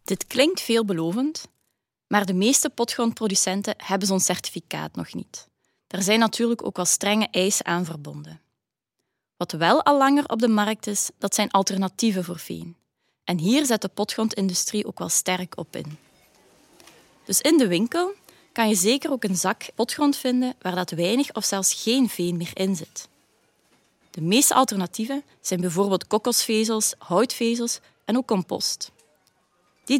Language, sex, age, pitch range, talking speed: Dutch, female, 20-39, 180-235 Hz, 155 wpm